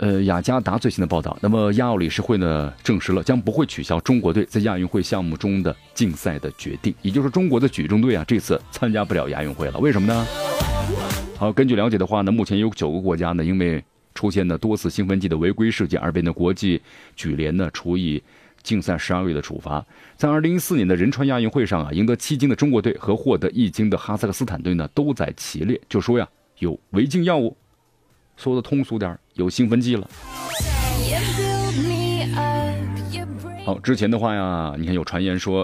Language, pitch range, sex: Japanese, 85-115 Hz, male